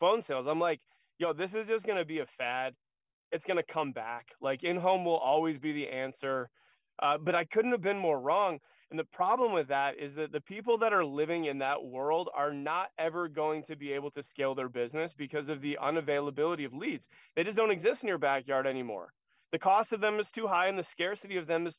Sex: male